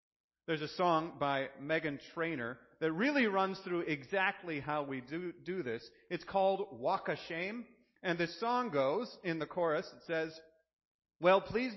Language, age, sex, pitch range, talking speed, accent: English, 40-59, male, 155-230 Hz, 165 wpm, American